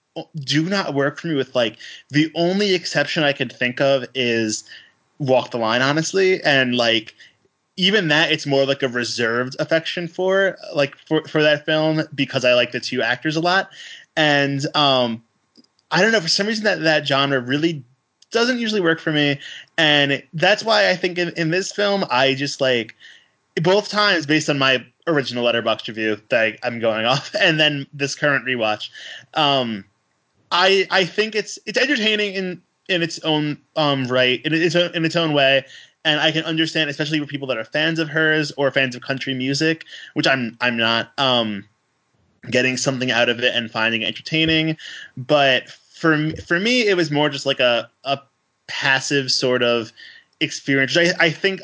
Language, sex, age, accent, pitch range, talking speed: English, male, 20-39, American, 125-165 Hz, 180 wpm